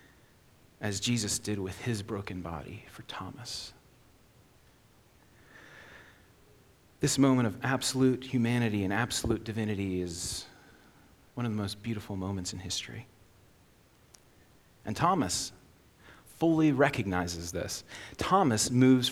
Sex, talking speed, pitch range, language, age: male, 105 wpm, 100-125 Hz, English, 40-59